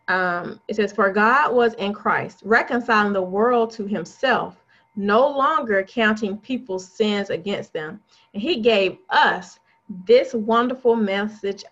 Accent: American